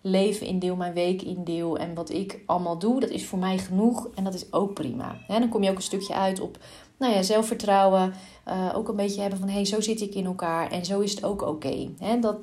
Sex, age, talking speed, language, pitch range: female, 30-49, 250 wpm, Dutch, 170-205 Hz